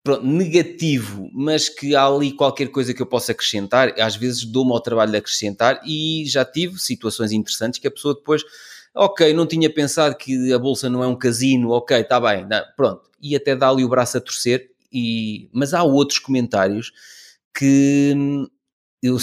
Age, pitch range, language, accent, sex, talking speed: 20-39, 125-185 Hz, Portuguese, Portuguese, male, 180 wpm